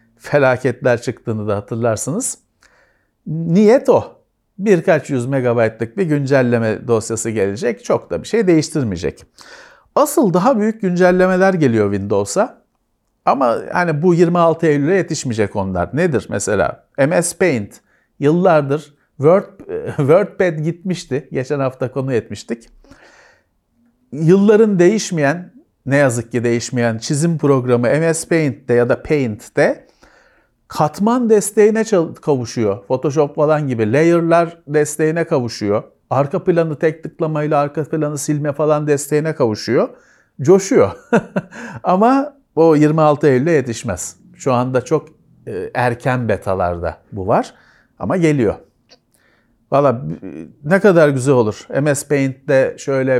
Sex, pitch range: male, 125-175 Hz